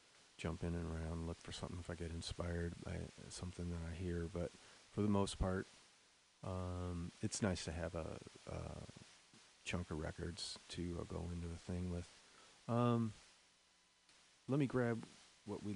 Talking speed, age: 165 wpm, 40-59